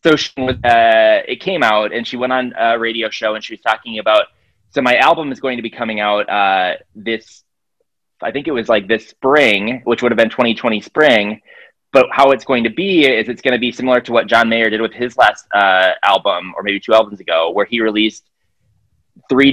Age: 20-39